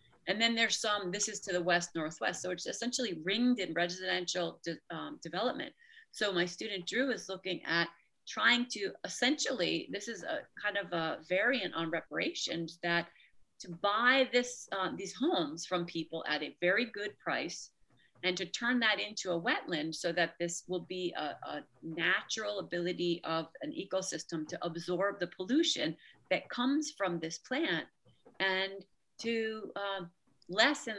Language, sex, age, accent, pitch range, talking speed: English, female, 40-59, American, 170-215 Hz, 160 wpm